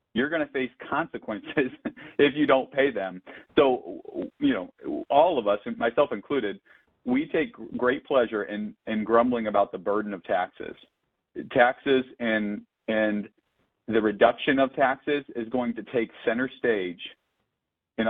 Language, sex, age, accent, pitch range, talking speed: English, male, 40-59, American, 105-135 Hz, 145 wpm